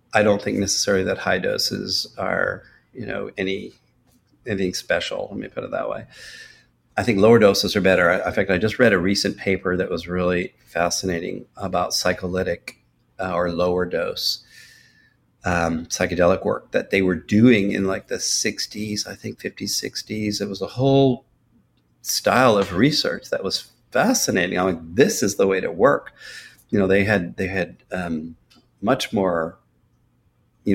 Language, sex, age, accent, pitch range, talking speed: English, male, 40-59, American, 85-100 Hz, 170 wpm